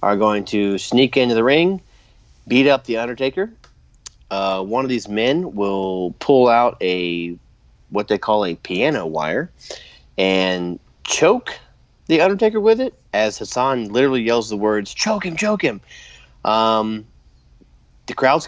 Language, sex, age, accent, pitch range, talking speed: English, male, 30-49, American, 95-120 Hz, 145 wpm